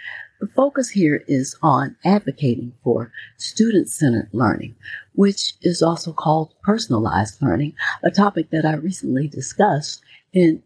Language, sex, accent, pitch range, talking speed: English, female, American, 125-175 Hz, 125 wpm